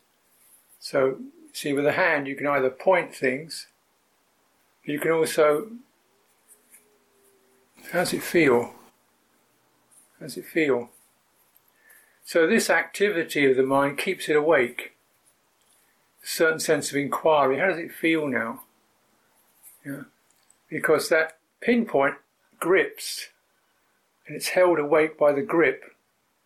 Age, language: 50-69, English